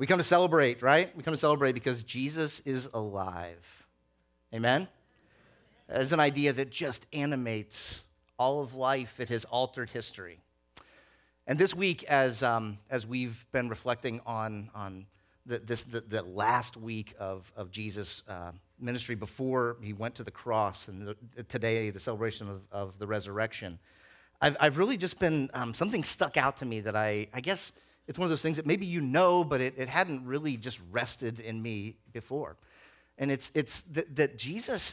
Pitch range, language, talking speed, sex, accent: 105-150 Hz, English, 180 wpm, male, American